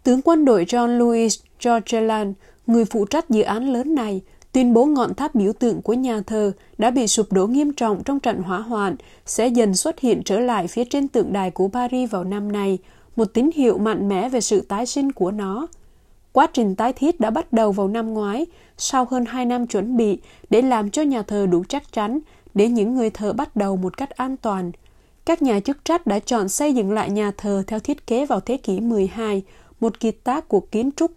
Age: 20-39